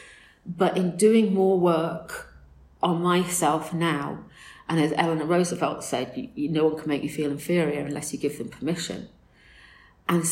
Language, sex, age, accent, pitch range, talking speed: English, female, 40-59, British, 145-175 Hz, 150 wpm